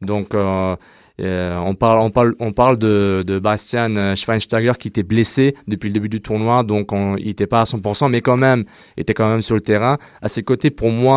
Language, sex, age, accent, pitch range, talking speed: French, male, 20-39, French, 100-125 Hz, 225 wpm